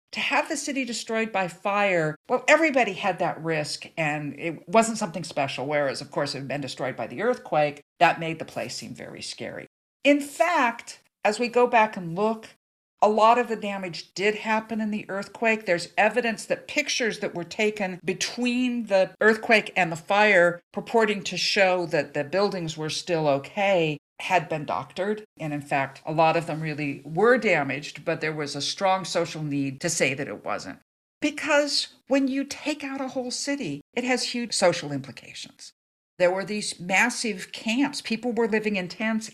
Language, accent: English, American